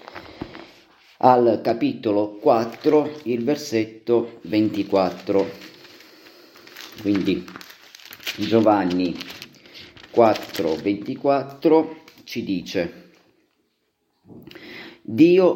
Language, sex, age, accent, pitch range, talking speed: Italian, male, 40-59, native, 110-155 Hz, 50 wpm